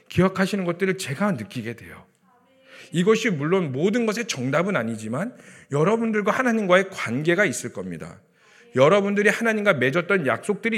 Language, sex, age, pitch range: Korean, male, 40-59, 140-195 Hz